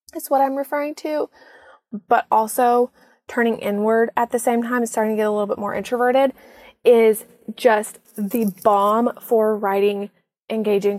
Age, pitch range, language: 20-39, 210-245 Hz, English